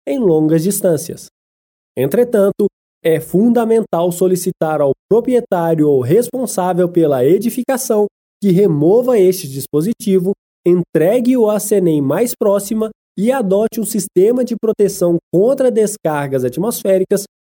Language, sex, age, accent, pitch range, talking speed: Portuguese, male, 20-39, Brazilian, 170-225 Hz, 105 wpm